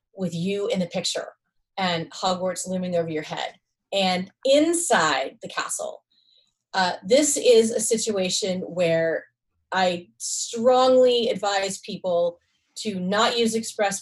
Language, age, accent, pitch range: English, 30-49, American, 185-235 Hz